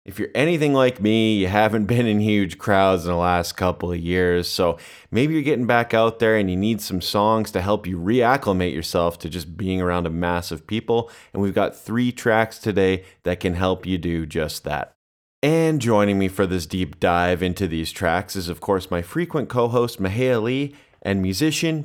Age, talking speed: 30-49, 205 wpm